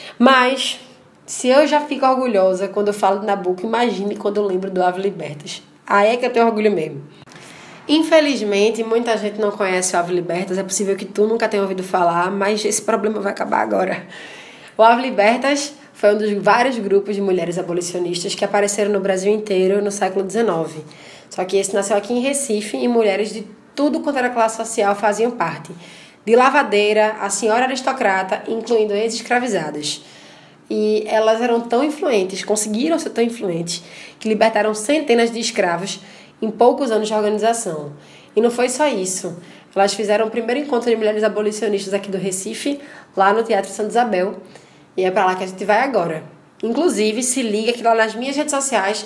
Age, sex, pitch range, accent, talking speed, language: 20-39, female, 195-230 Hz, Brazilian, 180 wpm, Portuguese